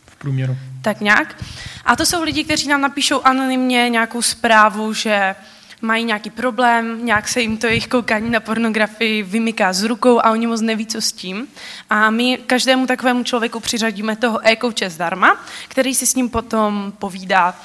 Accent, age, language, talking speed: native, 20-39, Czech, 165 wpm